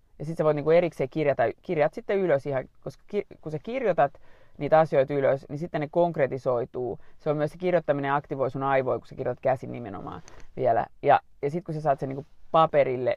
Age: 30-49